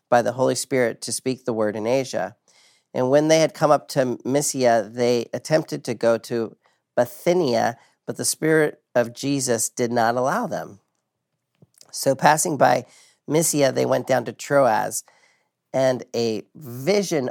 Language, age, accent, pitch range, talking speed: English, 40-59, American, 115-145 Hz, 155 wpm